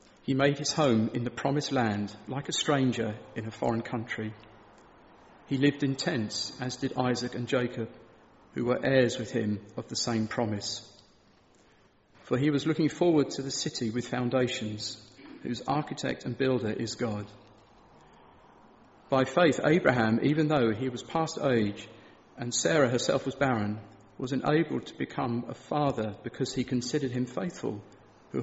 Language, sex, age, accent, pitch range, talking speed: English, male, 40-59, British, 110-140 Hz, 160 wpm